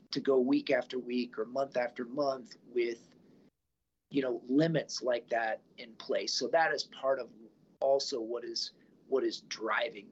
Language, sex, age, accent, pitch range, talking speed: English, male, 40-59, American, 125-165 Hz, 165 wpm